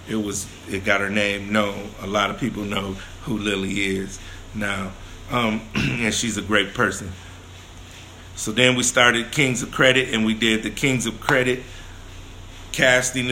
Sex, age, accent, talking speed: male, 50-69, American, 165 wpm